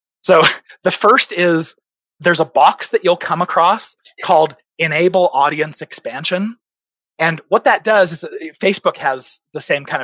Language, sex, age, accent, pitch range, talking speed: English, male, 30-49, American, 155-230 Hz, 150 wpm